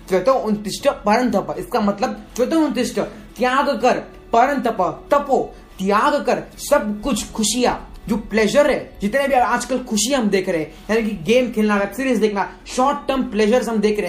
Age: 20-39